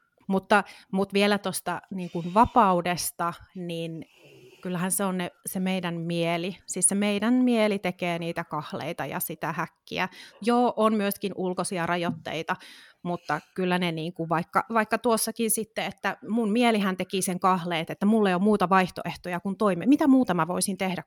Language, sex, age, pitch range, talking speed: Finnish, female, 30-49, 175-205 Hz, 160 wpm